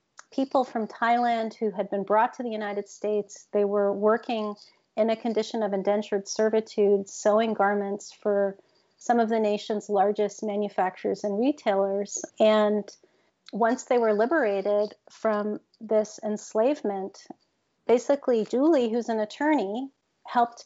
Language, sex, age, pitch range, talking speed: English, female, 40-59, 210-250 Hz, 130 wpm